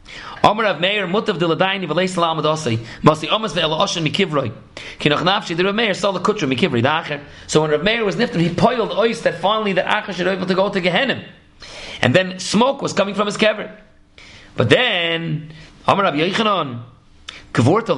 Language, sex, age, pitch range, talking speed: English, male, 40-59, 160-220 Hz, 105 wpm